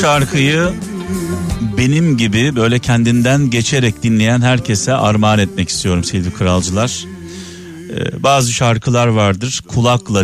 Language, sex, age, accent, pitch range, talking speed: Turkish, male, 50-69, native, 95-135 Hz, 105 wpm